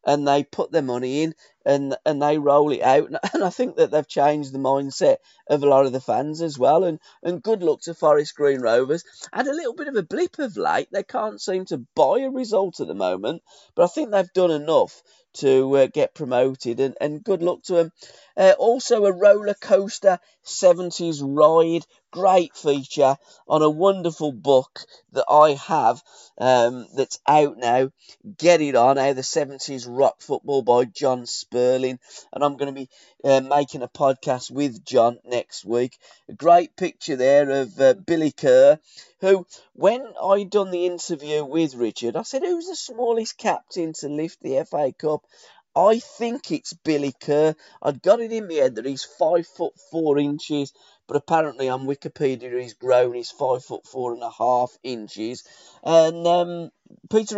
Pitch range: 135-190 Hz